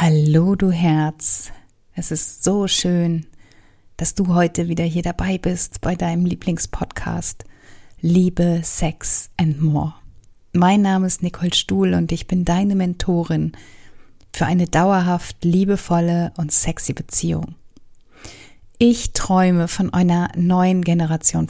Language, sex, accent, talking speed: German, female, German, 125 wpm